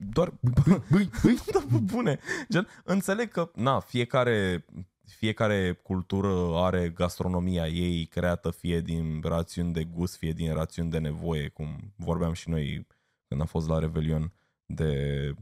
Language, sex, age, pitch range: Romanian, male, 20-39, 80-100 Hz